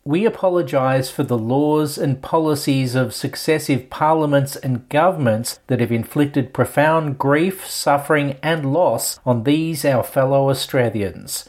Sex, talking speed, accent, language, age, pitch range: male, 130 wpm, Australian, English, 40-59, 125-155 Hz